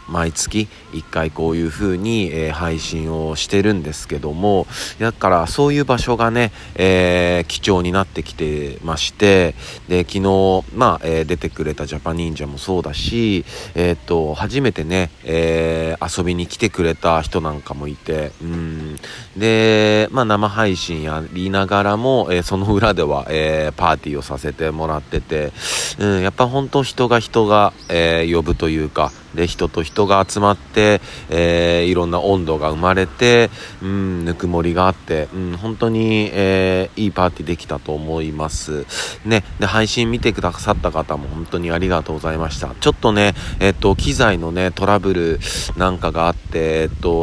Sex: male